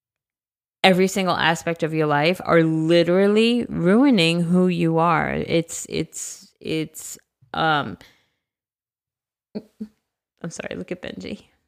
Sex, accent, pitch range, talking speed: female, American, 155-185 Hz, 110 wpm